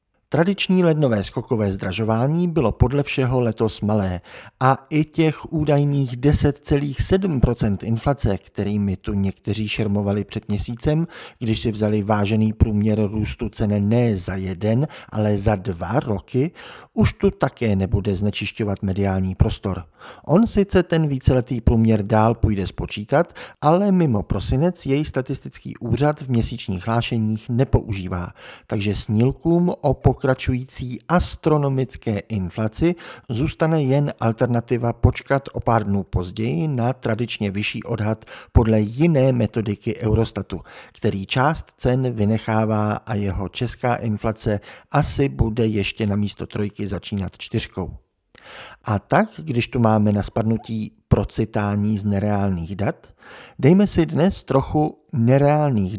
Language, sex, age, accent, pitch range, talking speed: Czech, male, 50-69, native, 105-135 Hz, 120 wpm